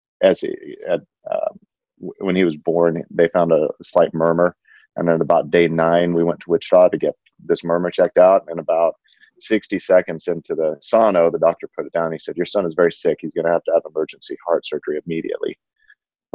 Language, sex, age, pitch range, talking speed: English, male, 30-49, 85-105 Hz, 225 wpm